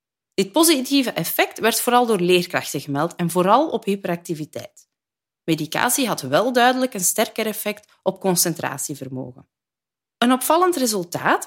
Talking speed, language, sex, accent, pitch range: 125 wpm, Dutch, female, Dutch, 160-255 Hz